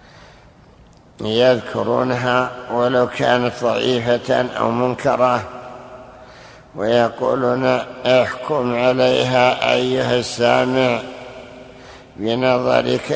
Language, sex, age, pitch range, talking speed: Arabic, male, 60-79, 120-125 Hz, 55 wpm